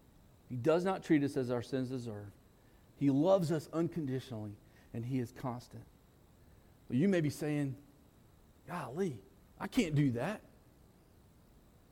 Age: 40-59